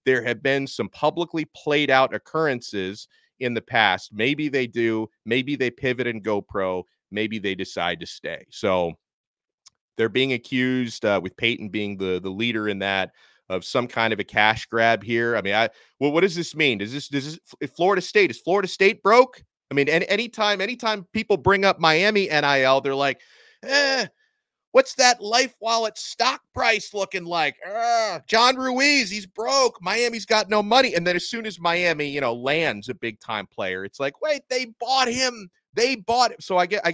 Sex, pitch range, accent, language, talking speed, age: male, 130-210 Hz, American, English, 195 wpm, 30-49